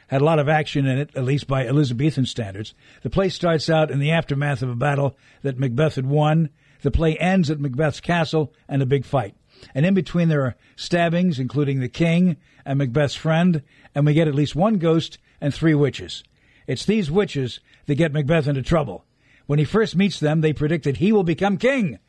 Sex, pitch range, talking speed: male, 140-175 Hz, 210 wpm